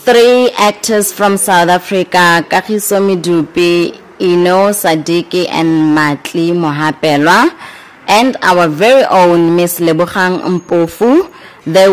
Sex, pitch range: female, 160-200 Hz